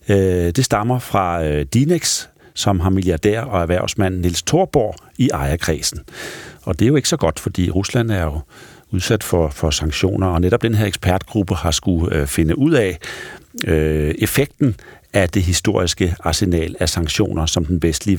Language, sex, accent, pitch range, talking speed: Danish, male, native, 85-115 Hz, 160 wpm